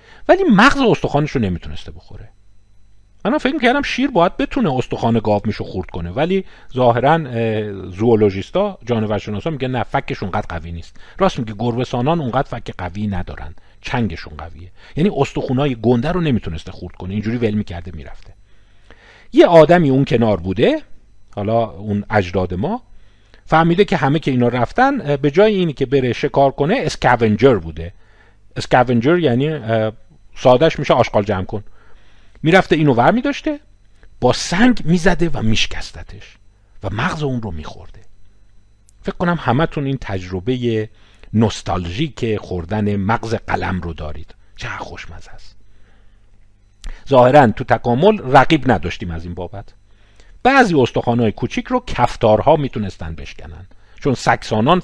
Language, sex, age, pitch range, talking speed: Persian, male, 40-59, 100-140 Hz, 140 wpm